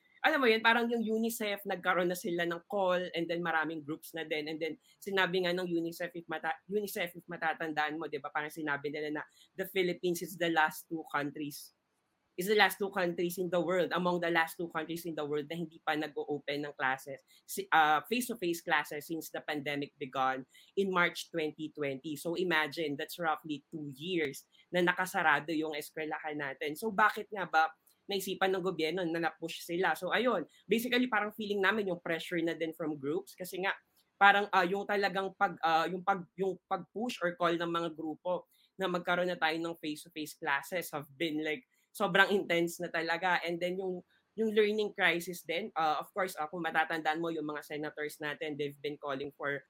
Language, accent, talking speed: English, Filipino, 190 wpm